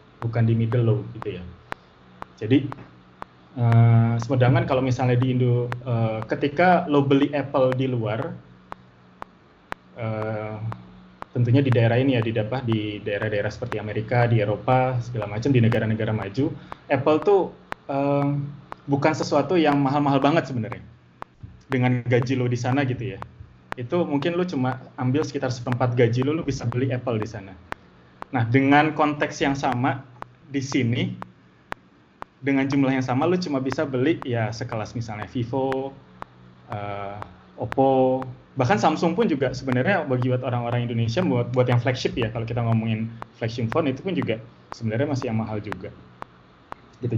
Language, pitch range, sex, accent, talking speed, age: Indonesian, 110-140 Hz, male, native, 150 wpm, 20-39